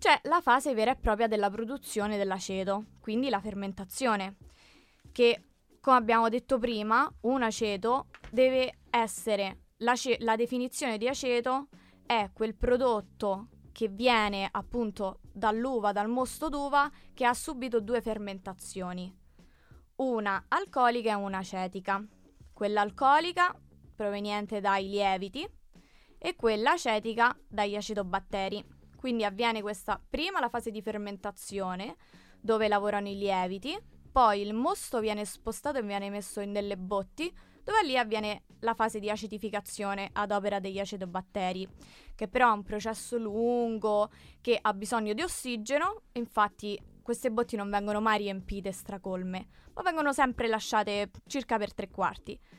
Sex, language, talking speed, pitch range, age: female, Italian, 135 wpm, 205-245 Hz, 20-39